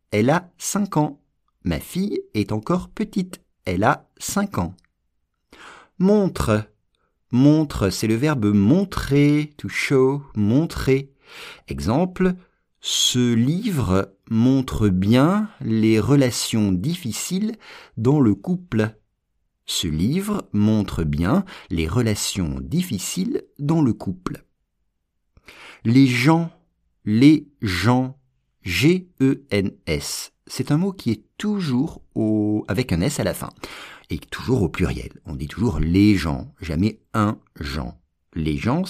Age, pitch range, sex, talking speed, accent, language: 50-69, 100-160 Hz, male, 115 wpm, French, English